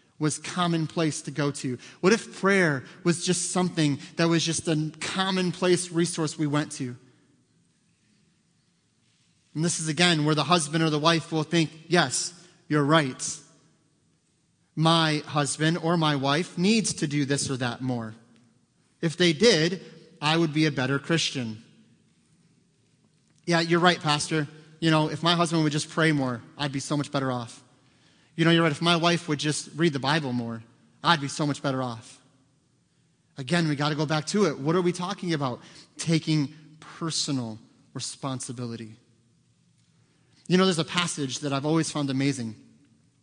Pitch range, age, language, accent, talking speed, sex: 140-165 Hz, 30-49, English, American, 165 wpm, male